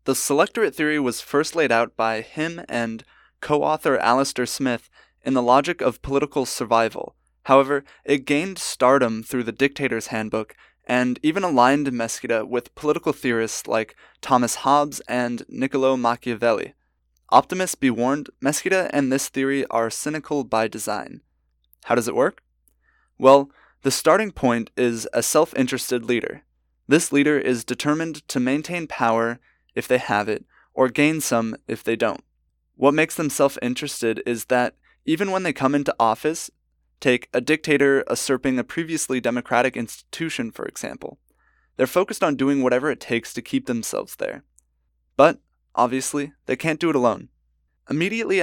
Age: 20-39